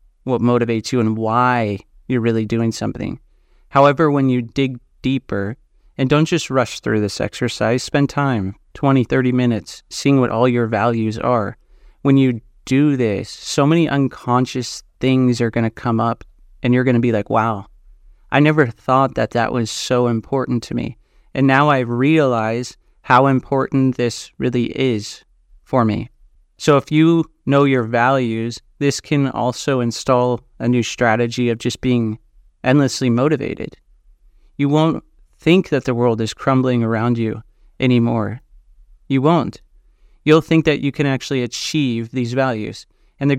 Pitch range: 115-135 Hz